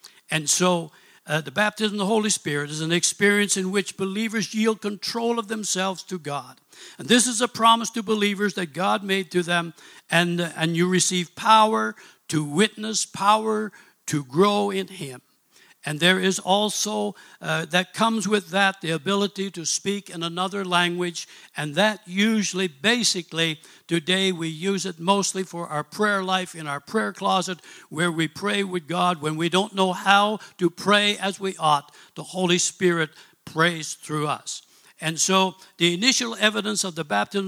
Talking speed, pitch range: 175 wpm, 165-200 Hz